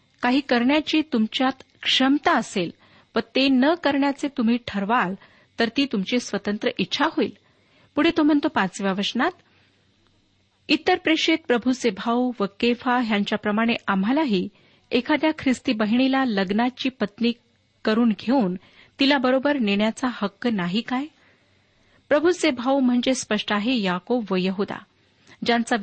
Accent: native